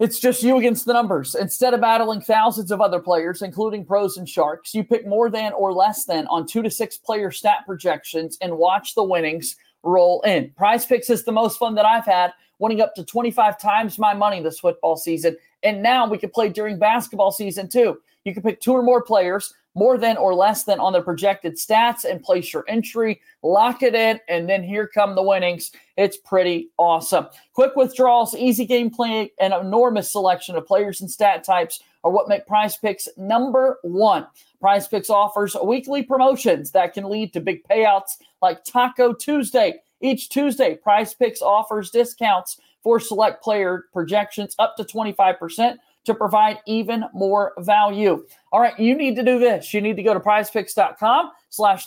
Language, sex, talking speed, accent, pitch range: English, male, 190 wpm, American, 190-235 Hz